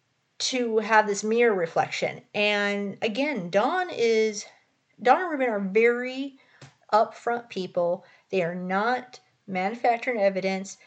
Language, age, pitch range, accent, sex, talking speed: English, 30-49, 195-235 Hz, American, female, 115 wpm